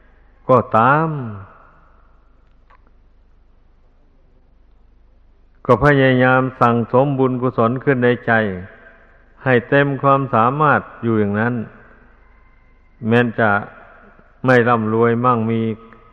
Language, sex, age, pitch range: Thai, male, 60-79, 110-130 Hz